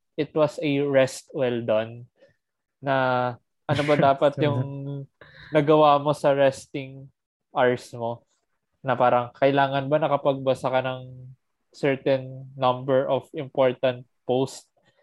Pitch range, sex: 125-140 Hz, male